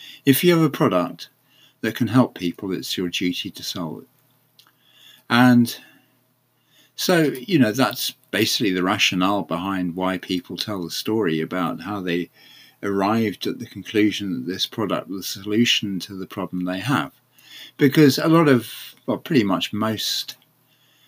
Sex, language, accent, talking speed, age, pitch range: male, English, British, 155 wpm, 50-69, 95-125 Hz